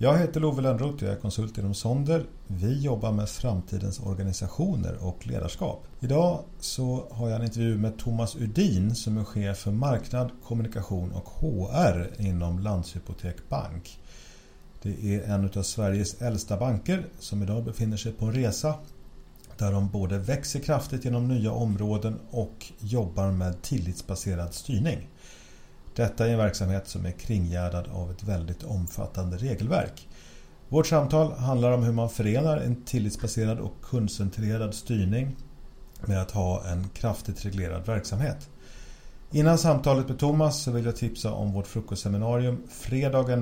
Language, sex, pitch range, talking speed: Swedish, male, 95-125 Hz, 150 wpm